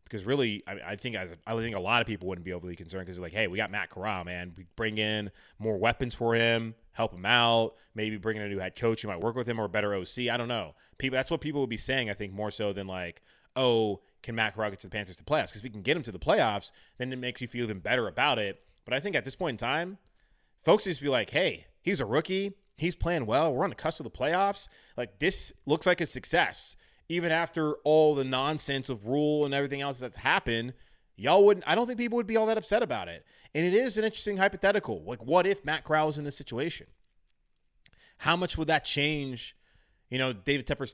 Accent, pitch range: American, 110-140 Hz